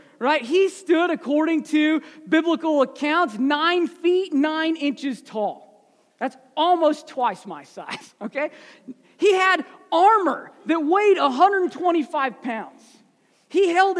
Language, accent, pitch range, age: English, American, 260-340 Hz, 40-59